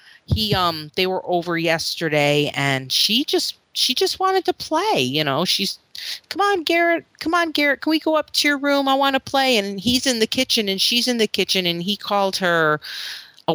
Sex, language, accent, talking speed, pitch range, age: female, English, American, 215 wpm, 145-235 Hz, 30-49